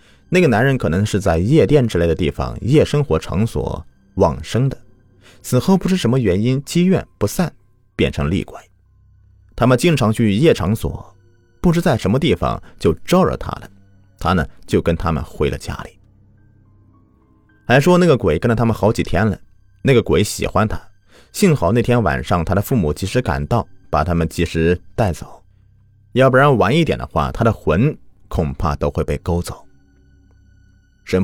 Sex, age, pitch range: male, 30-49, 85-115 Hz